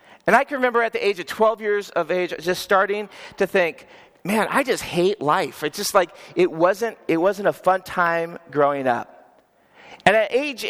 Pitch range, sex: 160-215 Hz, male